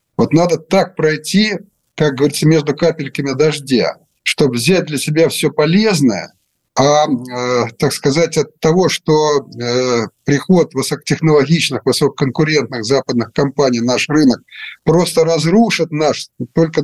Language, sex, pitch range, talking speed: Russian, male, 135-165 Hz, 120 wpm